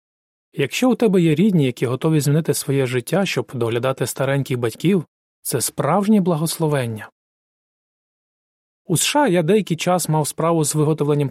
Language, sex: Ukrainian, male